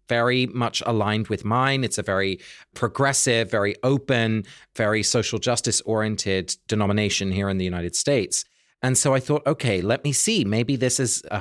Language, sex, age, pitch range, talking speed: English, male, 30-49, 105-140 Hz, 175 wpm